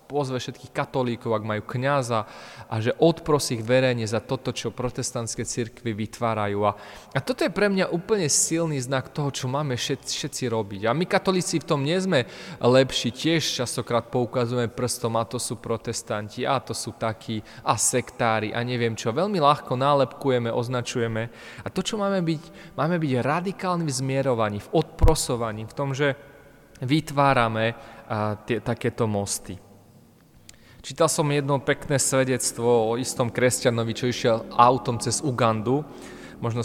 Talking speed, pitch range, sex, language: 150 wpm, 115-145 Hz, male, Slovak